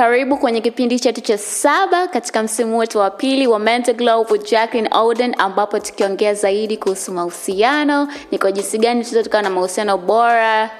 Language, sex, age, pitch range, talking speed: English, female, 20-39, 190-240 Hz, 160 wpm